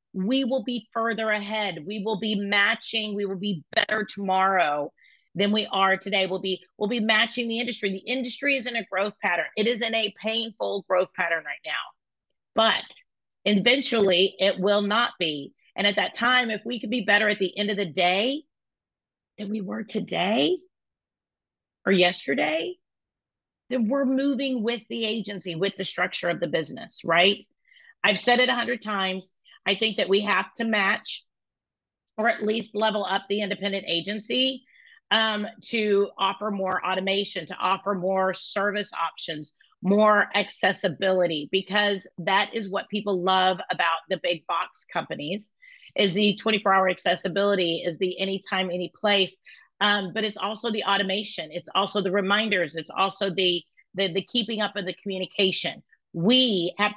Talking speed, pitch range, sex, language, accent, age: 165 wpm, 190-220 Hz, female, English, American, 40-59